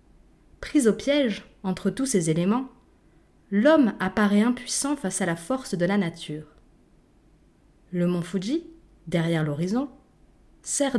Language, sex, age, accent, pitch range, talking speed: French, female, 30-49, French, 170-240 Hz, 125 wpm